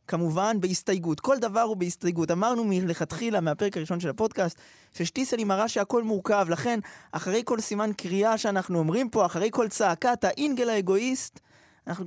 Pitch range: 165-240 Hz